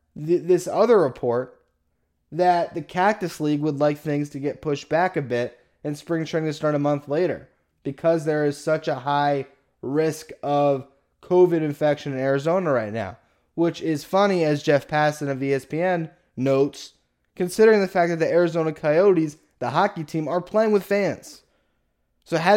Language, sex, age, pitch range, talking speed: English, male, 20-39, 140-170 Hz, 170 wpm